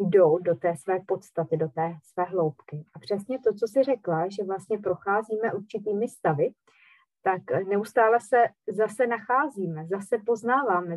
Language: Czech